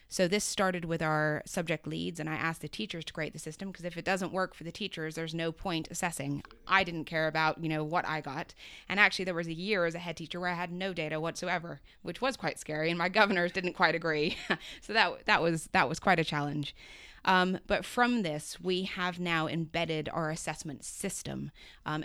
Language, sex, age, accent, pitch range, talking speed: English, female, 20-39, American, 155-185 Hz, 230 wpm